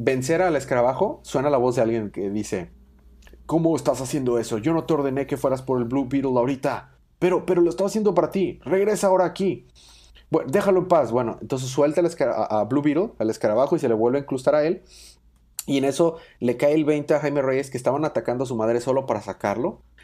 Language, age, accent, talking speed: Spanish, 30-49, Mexican, 230 wpm